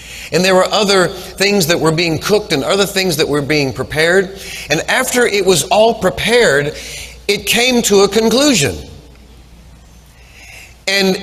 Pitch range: 130-200 Hz